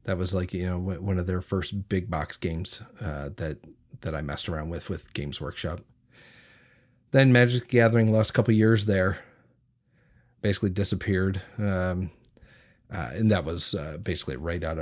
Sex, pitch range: male, 95-115 Hz